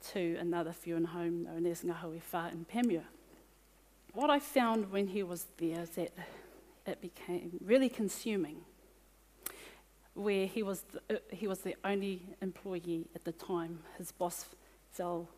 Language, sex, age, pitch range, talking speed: English, female, 40-59, 175-215 Hz, 125 wpm